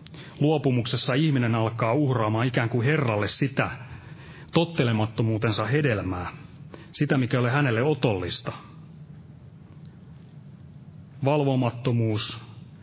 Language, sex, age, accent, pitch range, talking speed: Finnish, male, 30-49, native, 115-150 Hz, 75 wpm